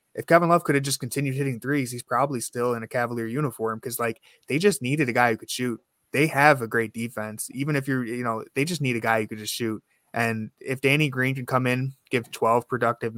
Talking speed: 250 wpm